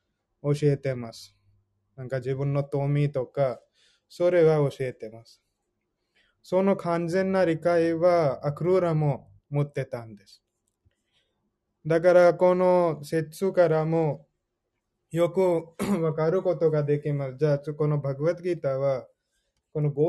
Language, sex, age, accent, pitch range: Japanese, male, 20-39, Indian, 135-160 Hz